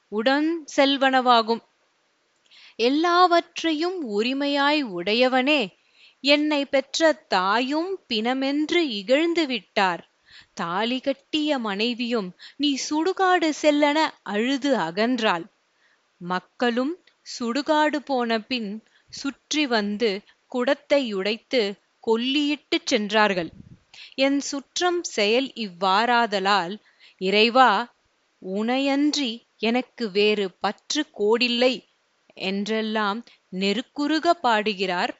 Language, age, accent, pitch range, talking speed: Tamil, 30-49, native, 205-285 Hz, 70 wpm